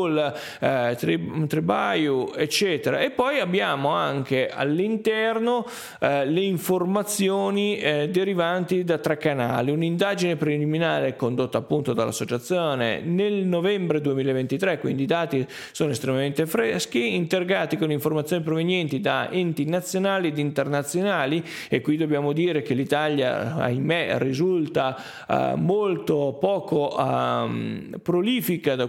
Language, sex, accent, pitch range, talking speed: Italian, male, native, 135-180 Hz, 110 wpm